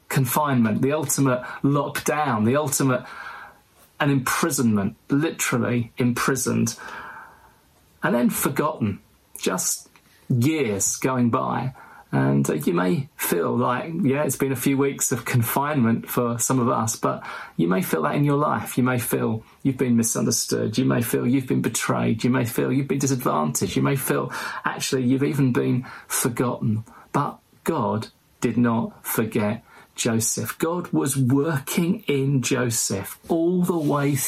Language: English